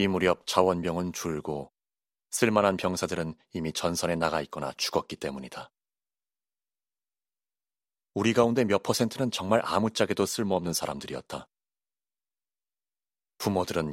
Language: Korean